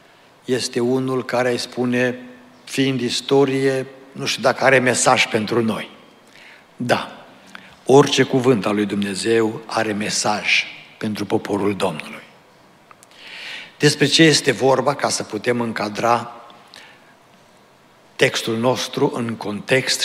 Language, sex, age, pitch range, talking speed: Romanian, male, 60-79, 115-140 Hz, 110 wpm